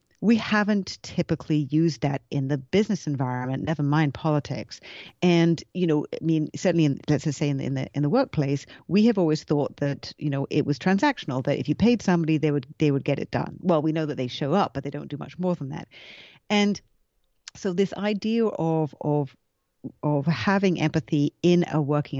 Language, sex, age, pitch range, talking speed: English, female, 40-59, 145-180 Hz, 205 wpm